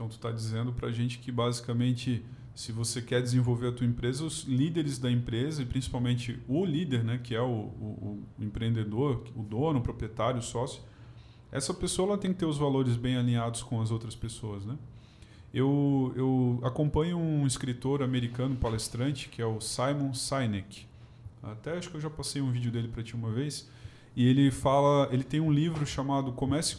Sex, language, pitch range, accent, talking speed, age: male, Portuguese, 120-150 Hz, Brazilian, 195 wpm, 20-39